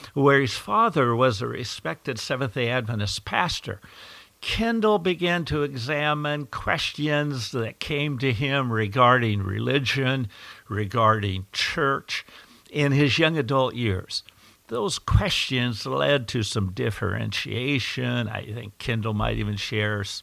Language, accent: English, American